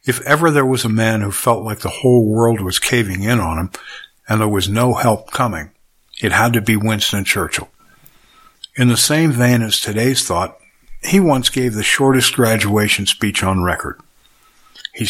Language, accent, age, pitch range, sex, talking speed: English, American, 60-79, 105-135 Hz, male, 185 wpm